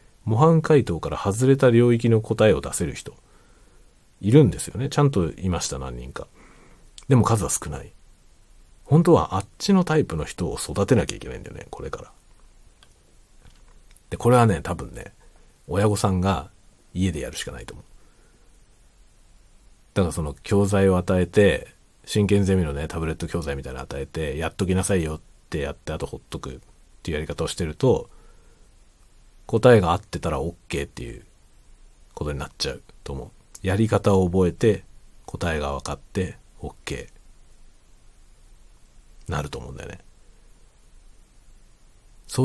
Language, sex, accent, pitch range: Japanese, male, native, 80-110 Hz